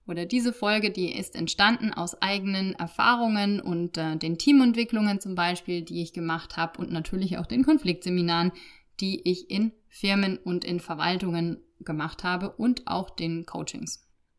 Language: German